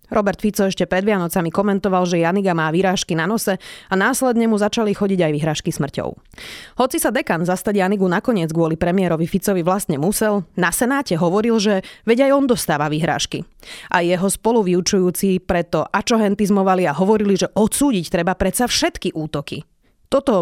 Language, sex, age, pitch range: Slovak, female, 30-49, 175-210 Hz